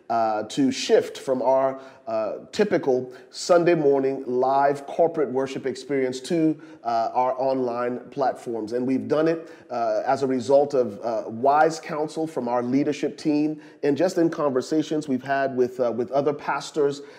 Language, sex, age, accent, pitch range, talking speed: English, male, 40-59, American, 125-155 Hz, 155 wpm